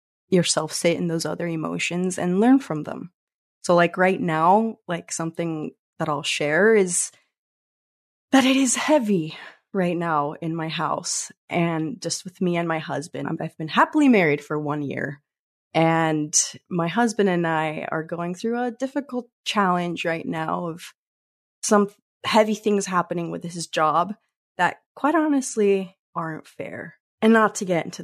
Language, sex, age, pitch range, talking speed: English, female, 20-39, 160-210 Hz, 160 wpm